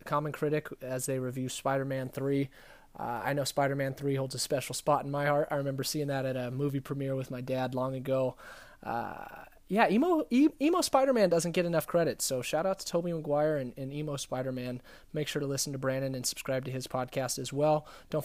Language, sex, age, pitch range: English, male, 20-39, 135-165 Hz